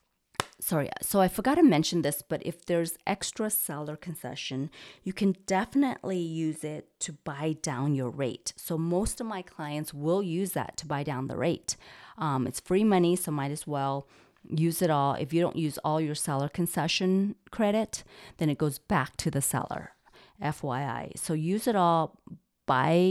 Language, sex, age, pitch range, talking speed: English, female, 30-49, 145-185 Hz, 180 wpm